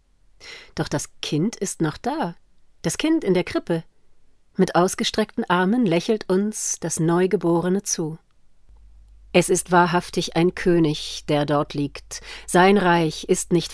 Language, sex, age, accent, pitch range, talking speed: German, female, 40-59, German, 150-195 Hz, 135 wpm